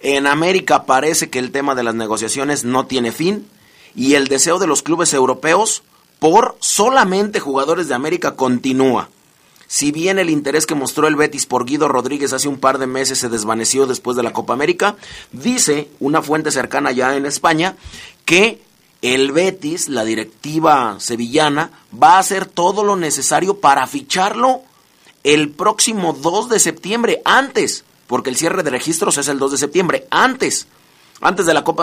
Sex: male